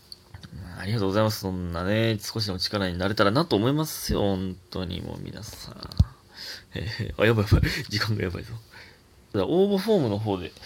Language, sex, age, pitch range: Japanese, male, 20-39, 100-140 Hz